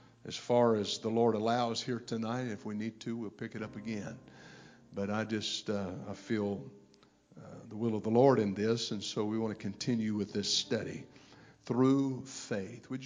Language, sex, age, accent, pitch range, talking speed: English, male, 50-69, American, 115-130 Hz, 200 wpm